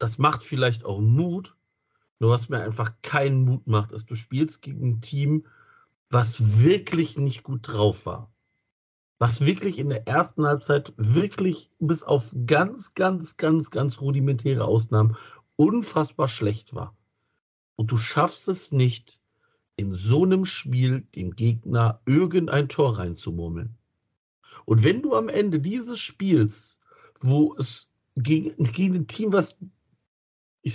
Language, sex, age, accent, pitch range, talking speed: German, male, 50-69, German, 115-170 Hz, 140 wpm